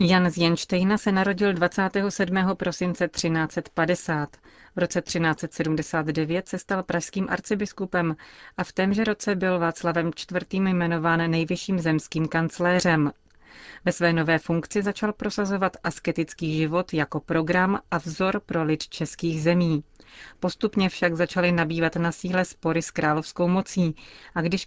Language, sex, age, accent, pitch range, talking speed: Czech, female, 30-49, native, 160-185 Hz, 130 wpm